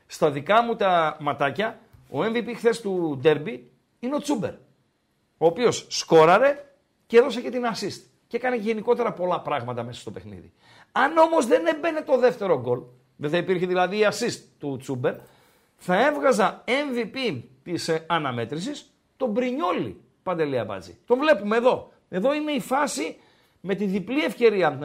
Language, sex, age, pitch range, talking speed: Greek, male, 50-69, 160-250 Hz, 155 wpm